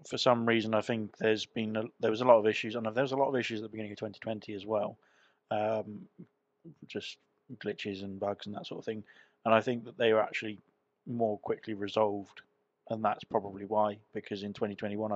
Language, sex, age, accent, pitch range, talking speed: English, male, 20-39, British, 105-115 Hz, 220 wpm